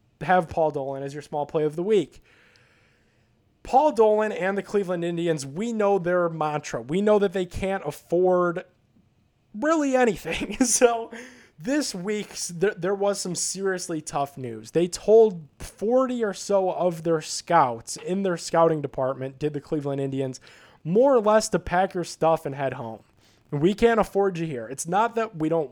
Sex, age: male, 20-39